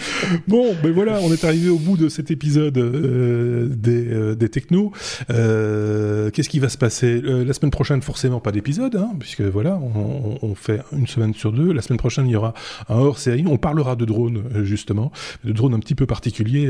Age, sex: 20-39, male